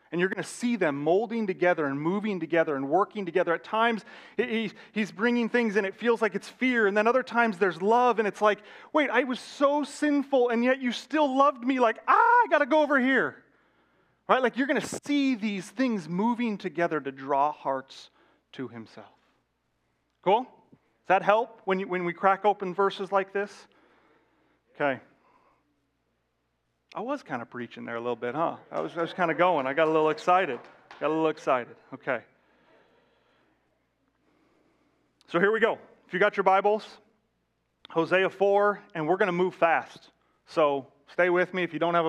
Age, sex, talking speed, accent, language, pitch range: 30-49, male, 190 wpm, American, English, 160-230 Hz